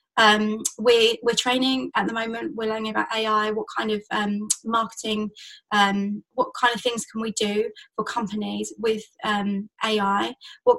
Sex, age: female, 20-39